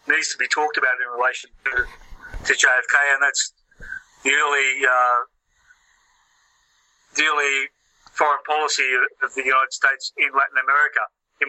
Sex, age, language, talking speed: male, 40-59, English, 140 wpm